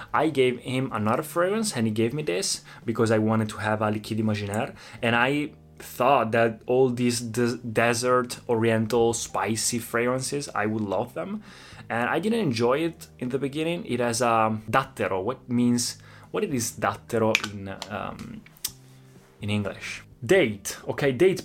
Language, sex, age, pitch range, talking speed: Italian, male, 20-39, 115-145 Hz, 160 wpm